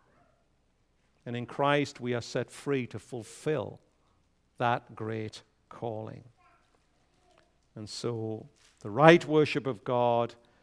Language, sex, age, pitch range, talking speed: English, male, 50-69, 110-155 Hz, 105 wpm